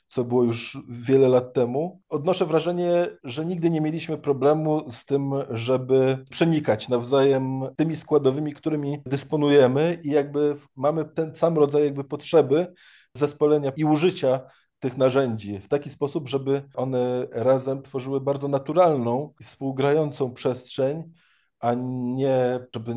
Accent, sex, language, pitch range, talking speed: native, male, Polish, 125-150 Hz, 130 wpm